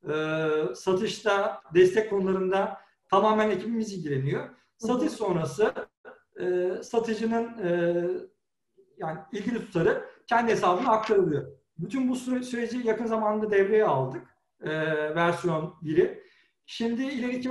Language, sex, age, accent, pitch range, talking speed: Turkish, male, 50-69, native, 175-230 Hz, 105 wpm